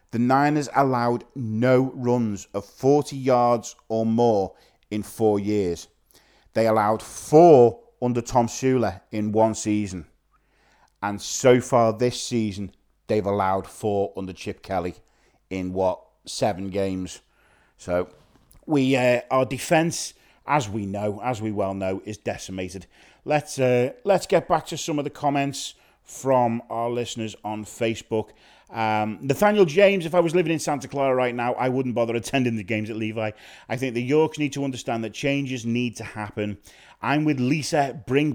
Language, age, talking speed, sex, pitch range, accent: English, 30-49, 160 wpm, male, 105-130 Hz, British